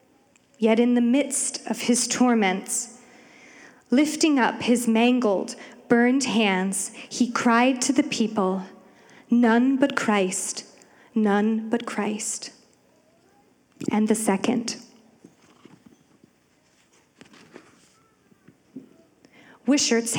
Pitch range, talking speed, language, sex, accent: 220-265 Hz, 85 wpm, English, female, American